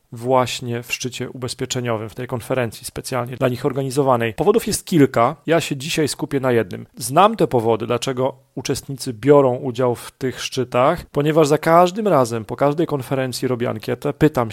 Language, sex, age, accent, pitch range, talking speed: Polish, male, 40-59, native, 125-150 Hz, 165 wpm